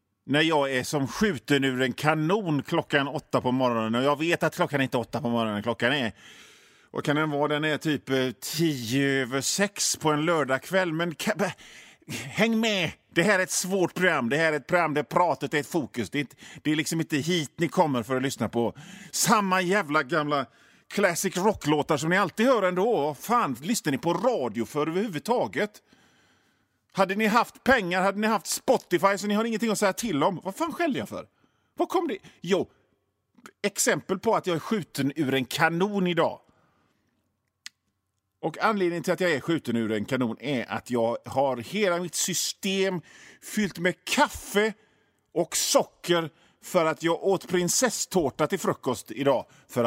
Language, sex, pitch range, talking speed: Swedish, male, 135-195 Hz, 185 wpm